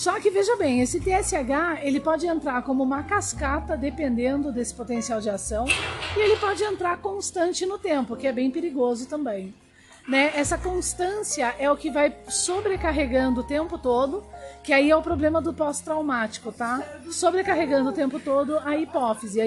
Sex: female